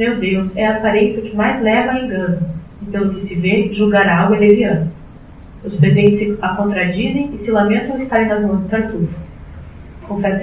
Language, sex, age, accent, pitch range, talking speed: Portuguese, female, 10-29, Brazilian, 180-210 Hz, 180 wpm